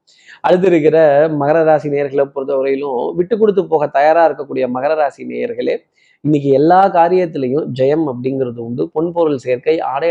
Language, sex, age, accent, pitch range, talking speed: Tamil, male, 20-39, native, 140-170 Hz, 130 wpm